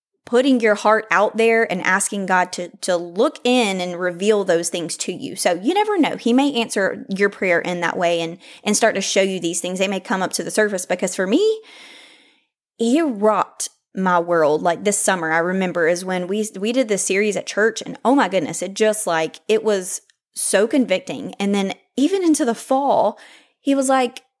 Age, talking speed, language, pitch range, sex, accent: 20-39, 210 wpm, English, 200-255 Hz, female, American